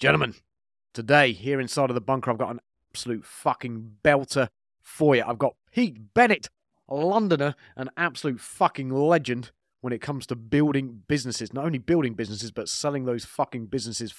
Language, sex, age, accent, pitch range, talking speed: English, male, 30-49, British, 125-160 Hz, 170 wpm